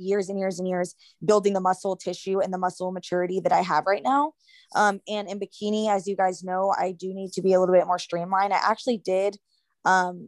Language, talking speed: English, 235 wpm